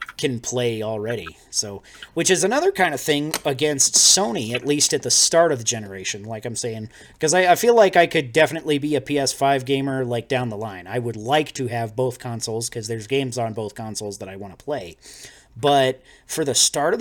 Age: 30-49